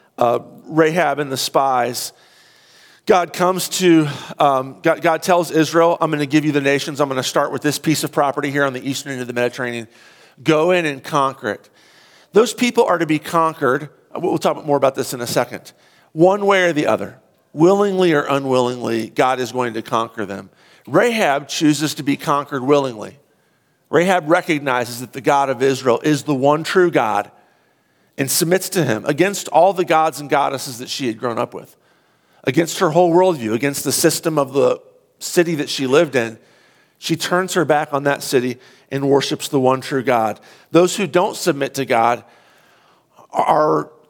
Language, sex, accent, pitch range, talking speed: English, male, American, 130-165 Hz, 190 wpm